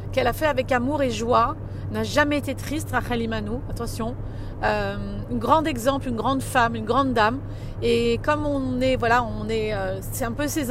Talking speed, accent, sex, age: 200 wpm, French, female, 40-59